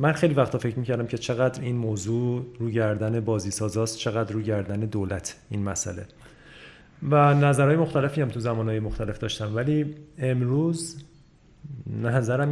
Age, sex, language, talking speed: 40-59, male, Persian, 145 wpm